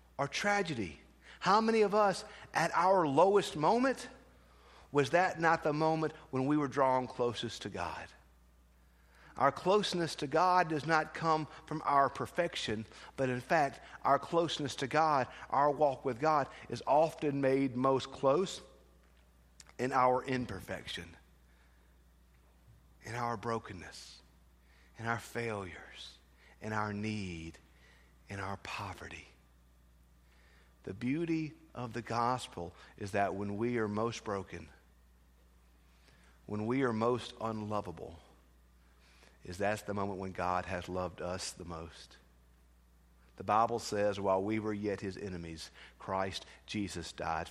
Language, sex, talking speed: English, male, 130 wpm